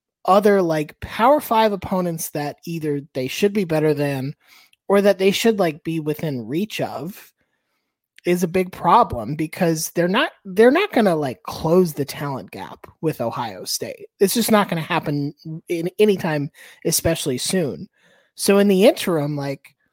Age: 30-49